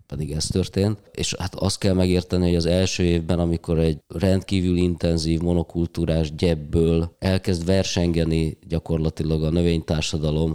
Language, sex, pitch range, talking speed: Hungarian, male, 80-90 Hz, 130 wpm